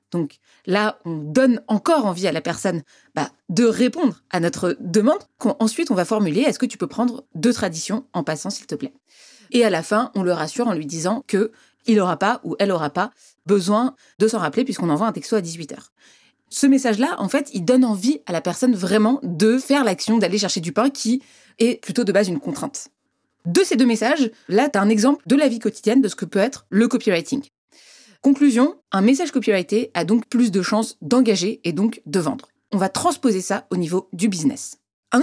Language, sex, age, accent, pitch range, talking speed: French, female, 30-49, French, 180-245 Hz, 220 wpm